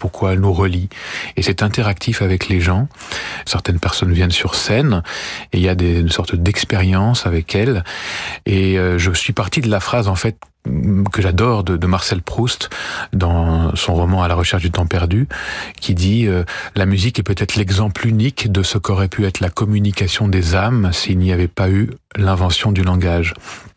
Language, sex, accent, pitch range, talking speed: French, male, French, 90-105 Hz, 185 wpm